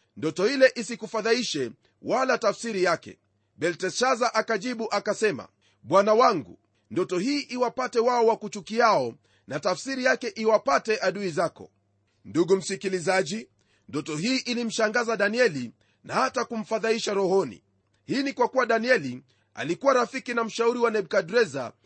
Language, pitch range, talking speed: Swahili, 185-240 Hz, 120 wpm